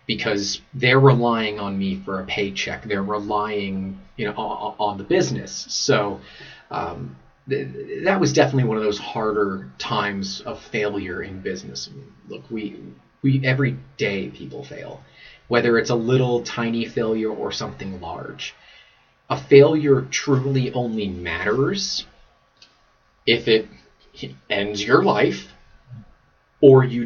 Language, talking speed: English, 135 wpm